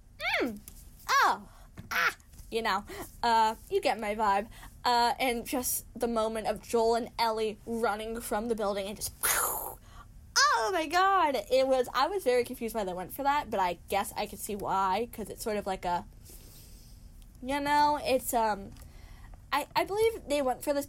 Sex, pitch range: female, 195-245 Hz